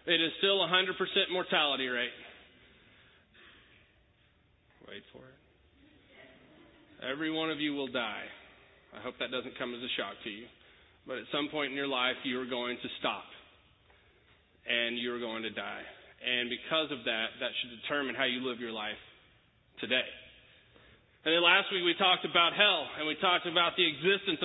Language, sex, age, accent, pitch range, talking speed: English, male, 30-49, American, 135-205 Hz, 170 wpm